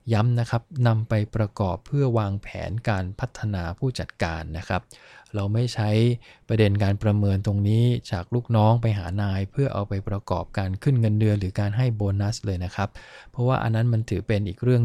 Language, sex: English, male